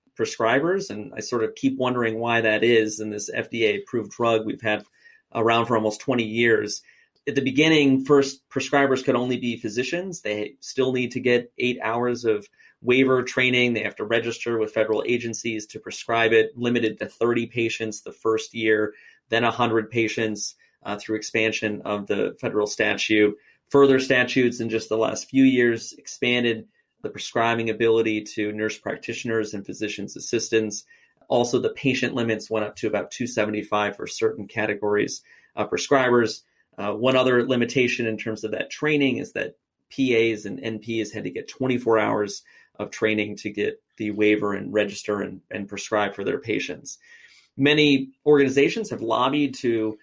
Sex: male